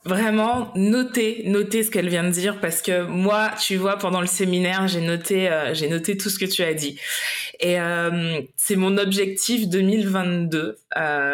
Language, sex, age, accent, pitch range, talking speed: French, female, 20-39, French, 170-210 Hz, 180 wpm